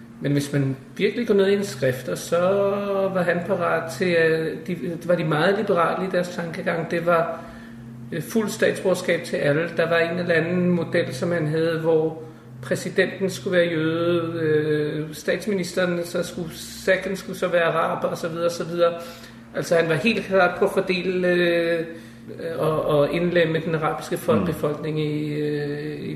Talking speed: 165 wpm